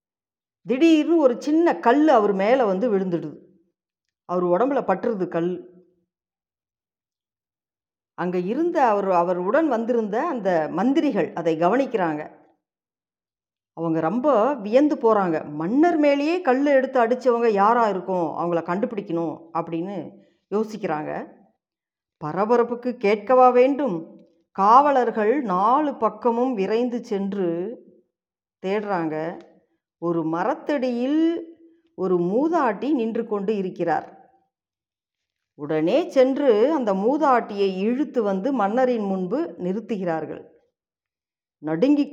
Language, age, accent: Tamil, 50-69, native